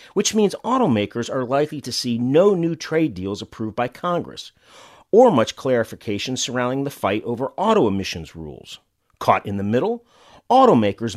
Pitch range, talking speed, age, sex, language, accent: 105-145 Hz, 155 wpm, 40-59, male, English, American